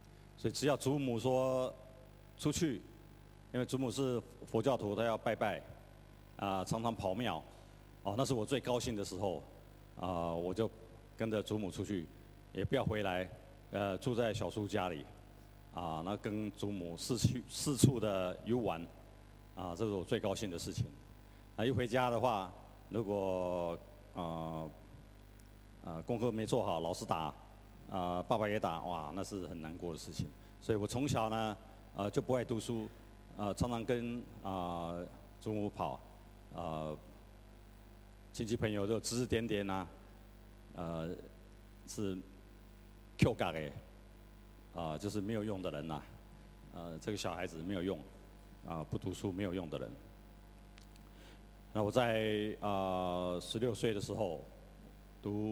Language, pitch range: Chinese, 95-115 Hz